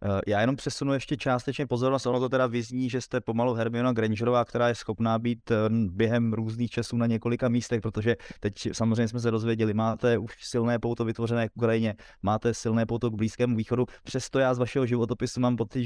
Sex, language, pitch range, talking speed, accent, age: male, Czech, 110-120 Hz, 195 wpm, native, 20-39